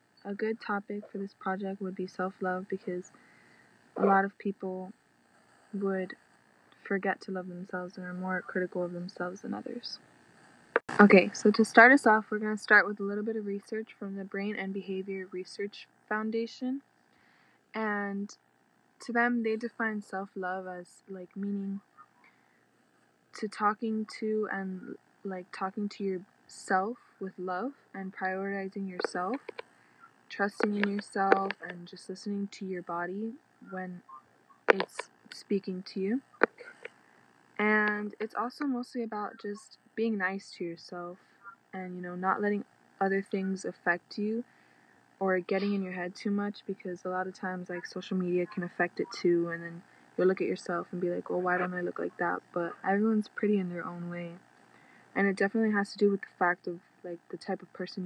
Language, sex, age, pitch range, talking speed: English, female, 20-39, 185-210 Hz, 170 wpm